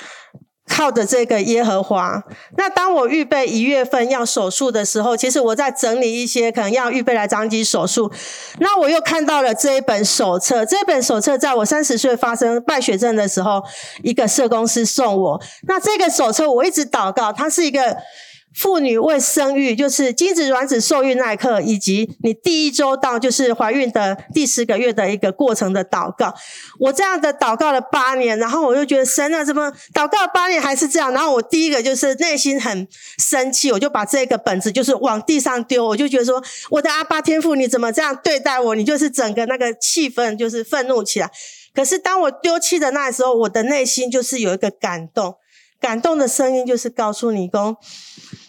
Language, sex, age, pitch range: Chinese, female, 40-59, 230-295 Hz